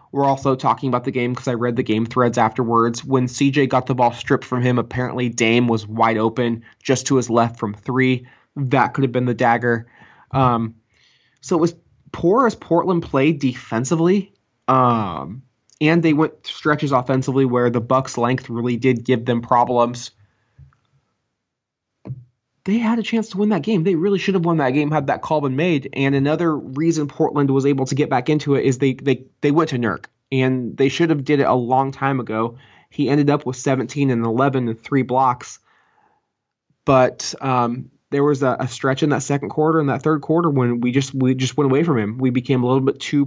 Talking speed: 210 wpm